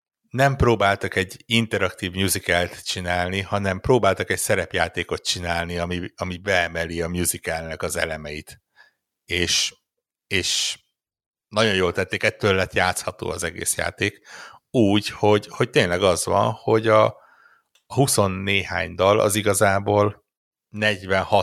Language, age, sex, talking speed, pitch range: Hungarian, 60-79, male, 120 wpm, 85-105 Hz